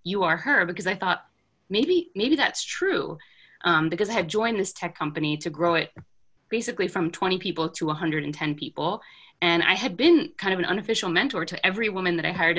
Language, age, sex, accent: English, 20-39, female, American